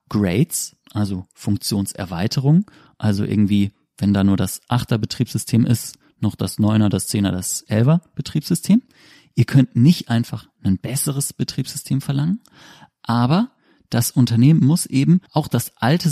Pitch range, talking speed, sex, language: 105-135 Hz, 135 wpm, male, German